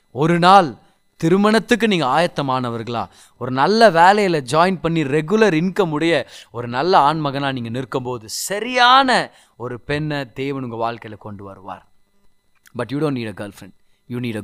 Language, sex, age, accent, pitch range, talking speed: Tamil, male, 30-49, native, 120-170 Hz, 155 wpm